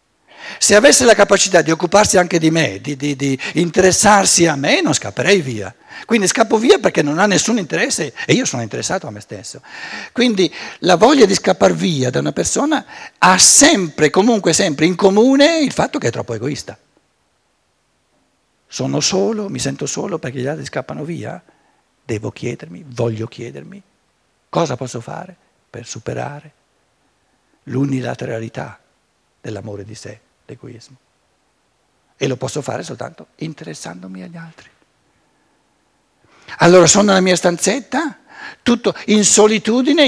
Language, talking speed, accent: Italian, 140 wpm, native